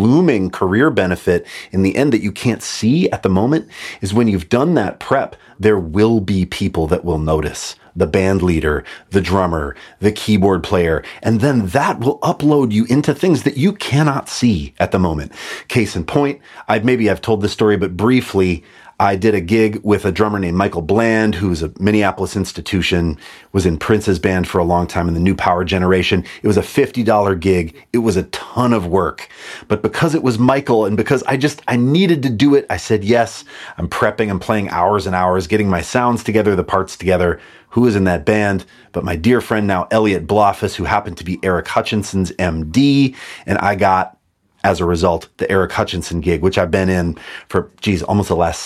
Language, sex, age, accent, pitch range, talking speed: English, male, 30-49, American, 95-120 Hz, 205 wpm